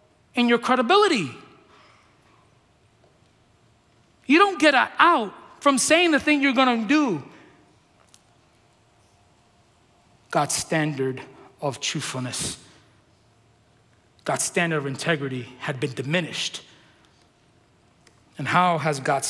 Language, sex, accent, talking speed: English, male, American, 95 wpm